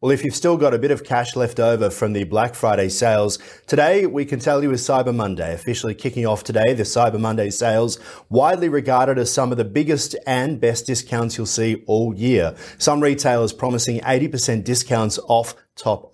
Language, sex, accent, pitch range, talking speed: English, male, Australian, 105-125 Hz, 195 wpm